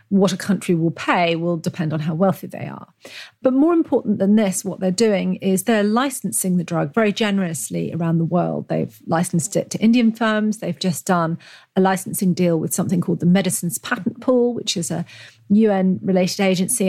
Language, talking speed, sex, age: English, 190 wpm, female, 40-59